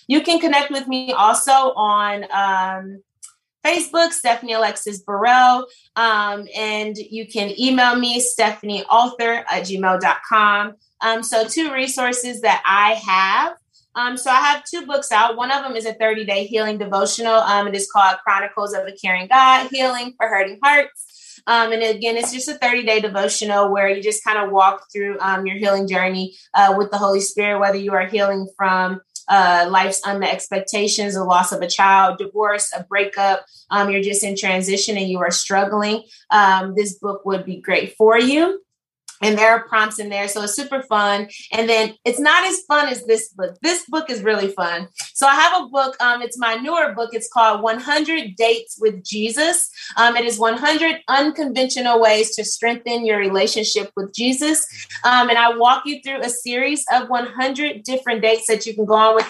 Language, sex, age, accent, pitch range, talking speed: English, female, 20-39, American, 200-245 Hz, 185 wpm